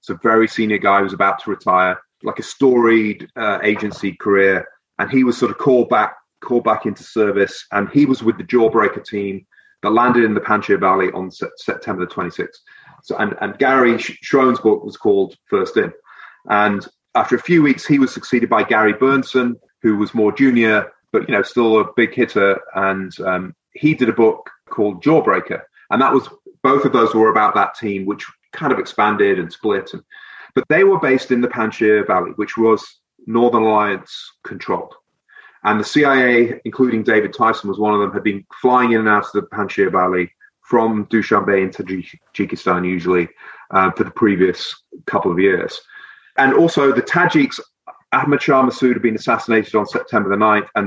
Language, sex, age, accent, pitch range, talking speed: English, male, 30-49, British, 100-130 Hz, 190 wpm